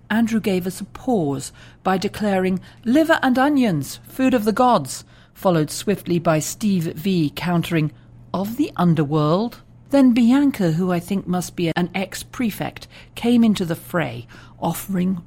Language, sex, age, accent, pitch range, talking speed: English, female, 40-59, British, 135-185 Hz, 145 wpm